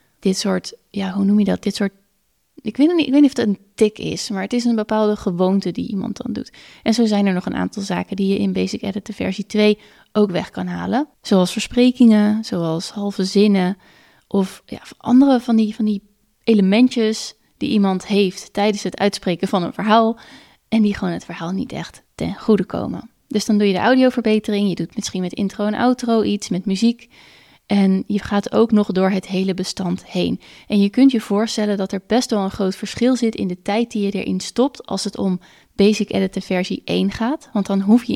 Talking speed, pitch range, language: 215 wpm, 195-230 Hz, Dutch